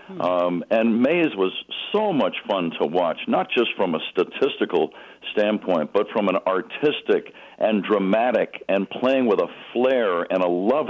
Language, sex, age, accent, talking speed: English, male, 60-79, American, 160 wpm